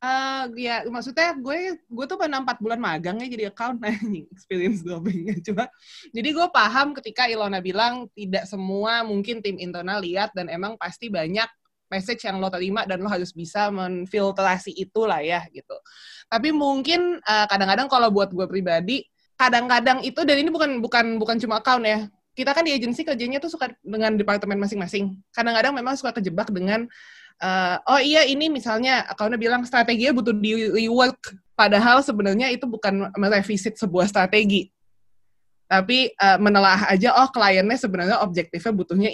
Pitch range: 190-250 Hz